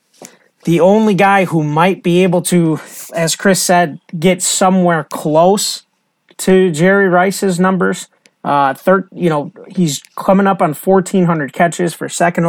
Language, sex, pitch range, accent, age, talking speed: English, male, 160-190 Hz, American, 30-49, 130 wpm